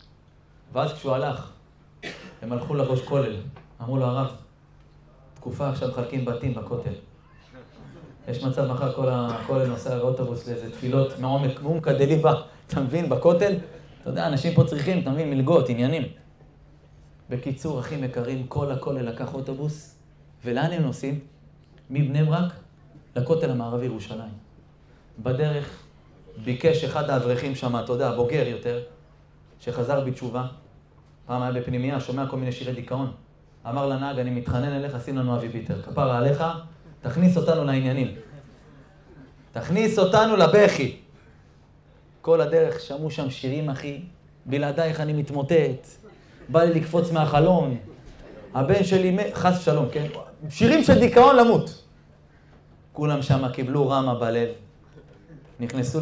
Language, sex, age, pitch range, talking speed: Hebrew, male, 20-39, 125-155 Hz, 125 wpm